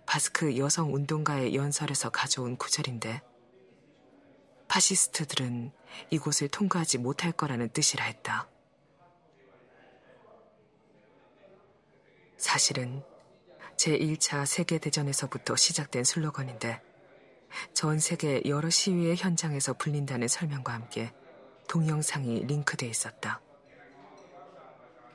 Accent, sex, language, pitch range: native, female, Korean, 115-150 Hz